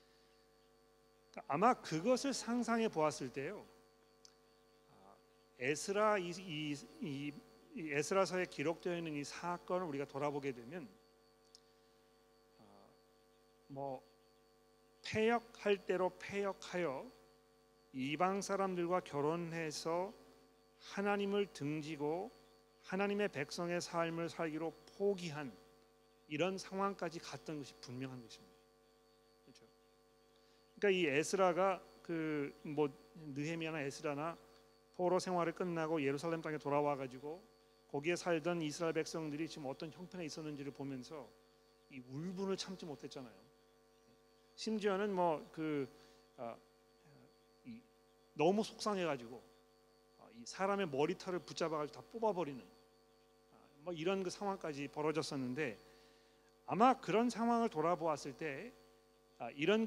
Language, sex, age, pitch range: Korean, male, 40-59, 140-185 Hz